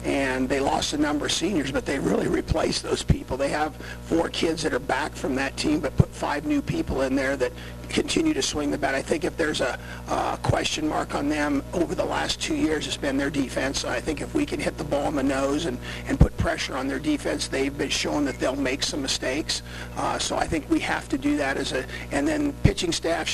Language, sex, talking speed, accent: English, male, 245 wpm, American